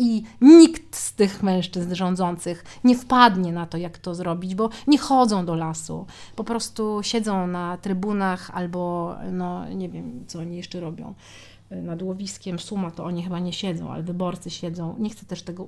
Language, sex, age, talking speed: Polish, female, 40-59, 175 wpm